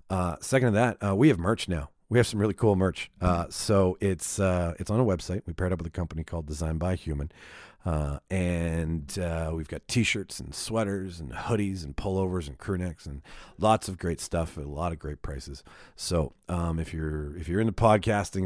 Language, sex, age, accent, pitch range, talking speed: English, male, 40-59, American, 80-105 Hz, 215 wpm